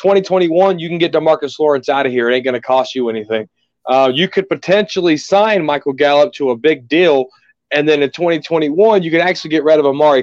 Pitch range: 140-175 Hz